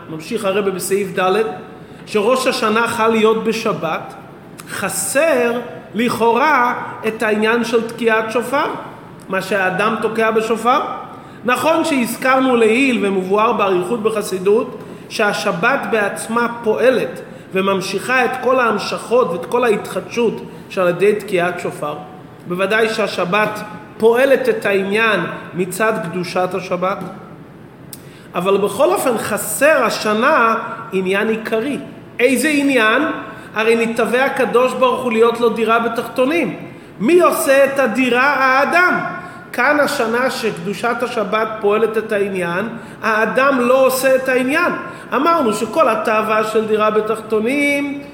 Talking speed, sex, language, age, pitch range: 110 wpm, male, Hebrew, 30-49, 200-250 Hz